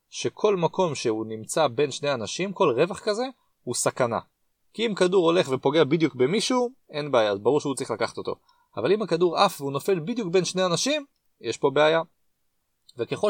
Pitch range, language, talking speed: 130-190 Hz, Hebrew, 185 wpm